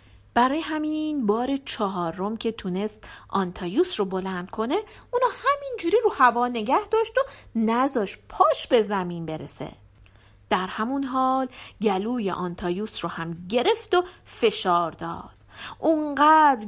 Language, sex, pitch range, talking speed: Persian, female, 190-295 Hz, 130 wpm